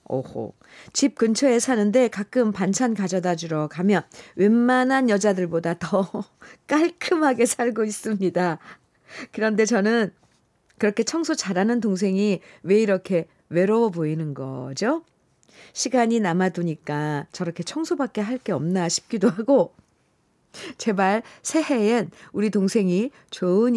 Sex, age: female, 50-69